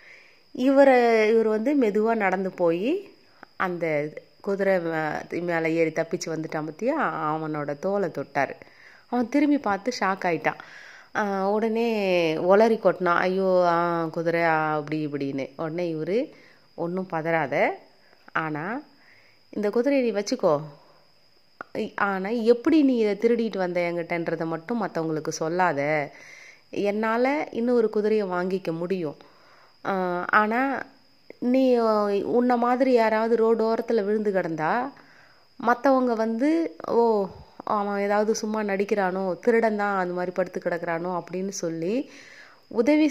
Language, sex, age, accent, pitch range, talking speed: Tamil, female, 30-49, native, 170-230 Hz, 100 wpm